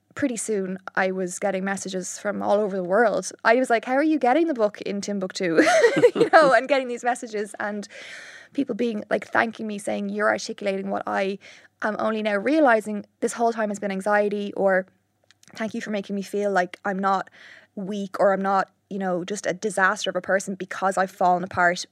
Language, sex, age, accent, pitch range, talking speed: English, female, 20-39, Irish, 185-220 Hz, 200 wpm